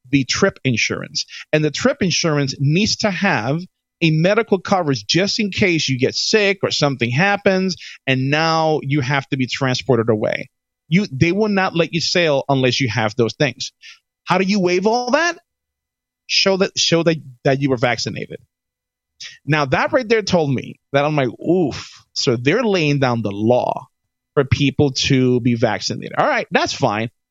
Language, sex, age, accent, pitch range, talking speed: English, male, 30-49, American, 130-195 Hz, 180 wpm